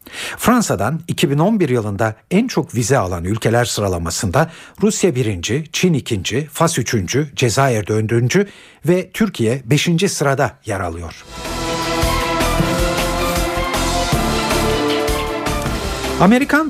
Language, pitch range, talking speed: Turkish, 110-160 Hz, 85 wpm